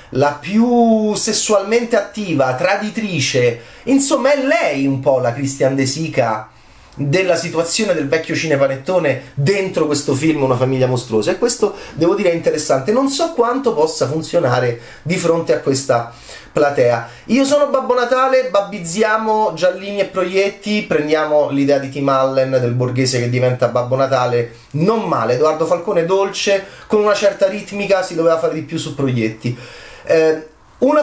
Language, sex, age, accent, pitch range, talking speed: Italian, male, 30-49, native, 140-220 Hz, 150 wpm